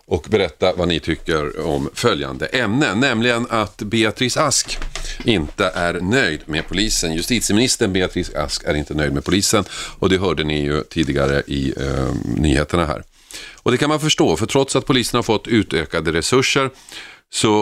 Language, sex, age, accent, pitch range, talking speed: Swedish, male, 40-59, native, 80-115 Hz, 165 wpm